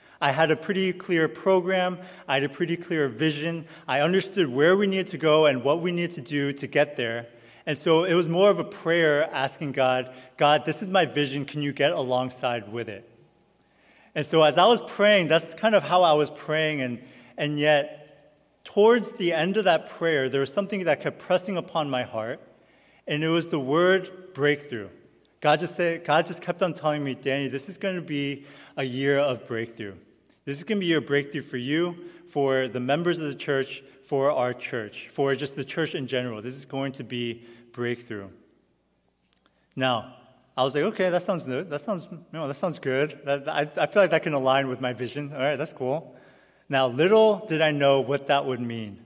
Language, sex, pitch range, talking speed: English, male, 130-170 Hz, 210 wpm